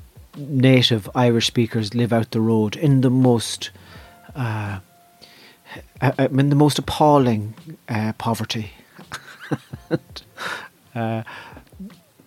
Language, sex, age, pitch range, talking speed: English, male, 30-49, 115-145 Hz, 90 wpm